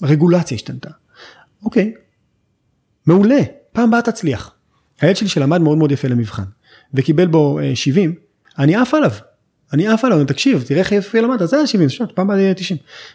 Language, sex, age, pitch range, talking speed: Hebrew, male, 30-49, 130-175 Hz, 155 wpm